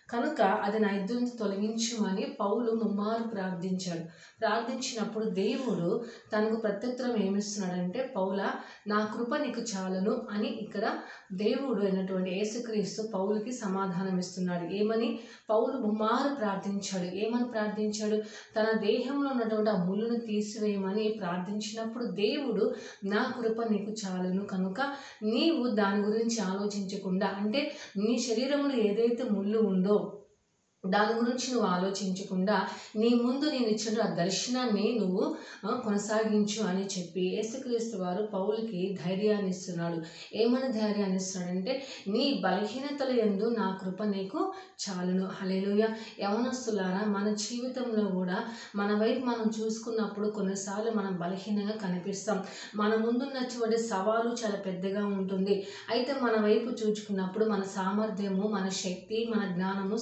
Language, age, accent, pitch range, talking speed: Telugu, 30-49, native, 195-230 Hz, 110 wpm